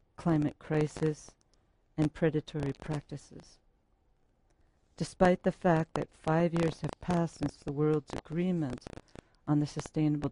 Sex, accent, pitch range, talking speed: female, American, 130-155 Hz, 115 wpm